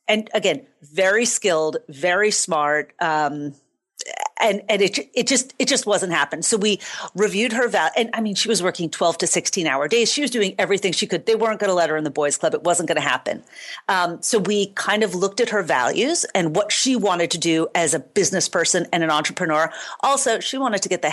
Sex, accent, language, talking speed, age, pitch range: female, American, English, 225 wpm, 40-59, 170-225 Hz